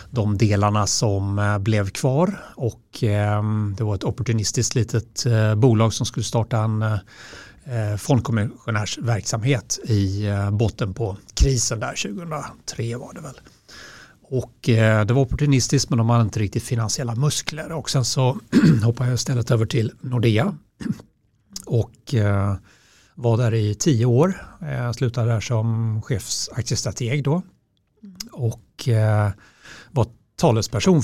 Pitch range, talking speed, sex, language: 110-125 Hz, 135 wpm, male, English